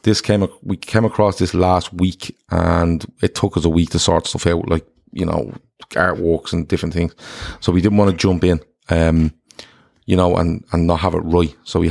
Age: 30-49